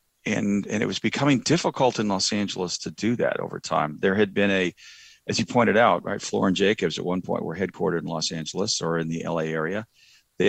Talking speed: 225 wpm